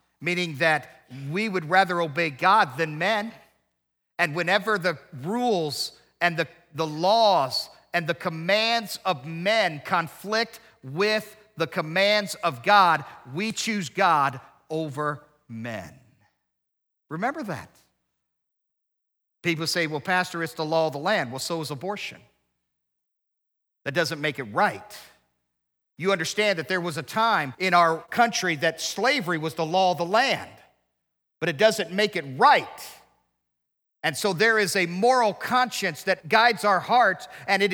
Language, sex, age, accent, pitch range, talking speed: English, male, 50-69, American, 135-200 Hz, 145 wpm